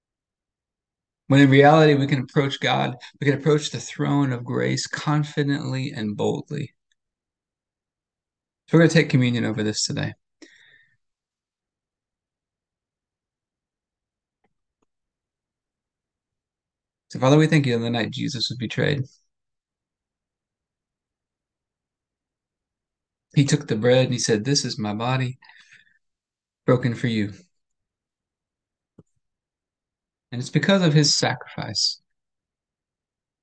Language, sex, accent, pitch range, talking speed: English, male, American, 120-150 Hz, 100 wpm